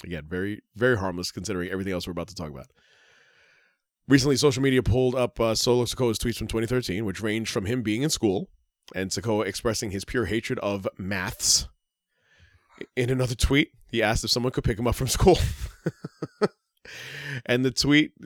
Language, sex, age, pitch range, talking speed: English, male, 20-39, 90-130 Hz, 180 wpm